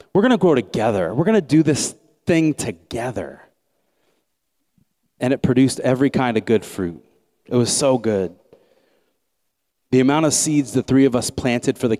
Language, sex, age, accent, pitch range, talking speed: English, male, 30-49, American, 105-130 Hz, 175 wpm